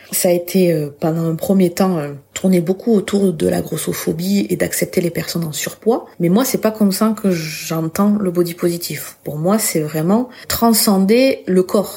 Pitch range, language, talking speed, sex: 160-200 Hz, French, 195 wpm, female